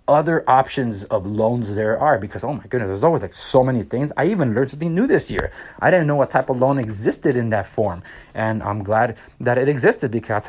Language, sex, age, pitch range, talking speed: English, male, 30-49, 110-165 Hz, 235 wpm